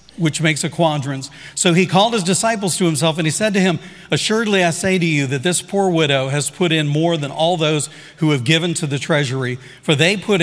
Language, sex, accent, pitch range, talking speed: English, male, American, 160-210 Hz, 235 wpm